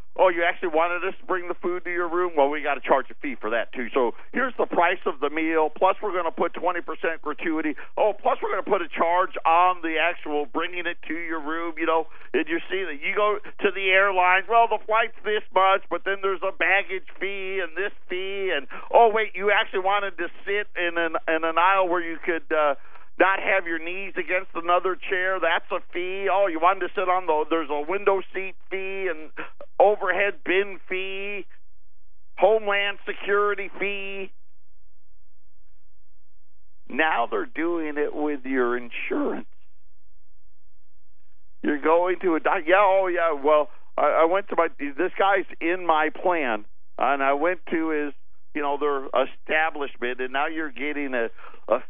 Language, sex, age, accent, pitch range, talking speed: English, male, 50-69, American, 130-190 Hz, 190 wpm